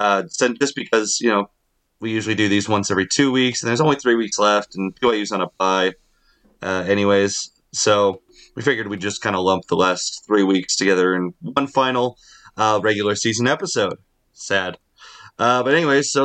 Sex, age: male, 30-49